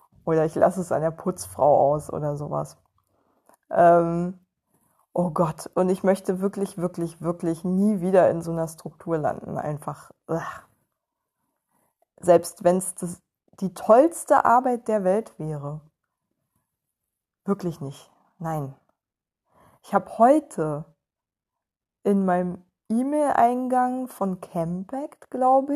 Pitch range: 175-230 Hz